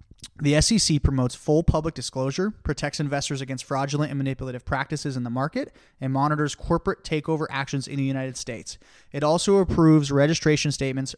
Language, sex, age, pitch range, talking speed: English, male, 20-39, 135-165 Hz, 160 wpm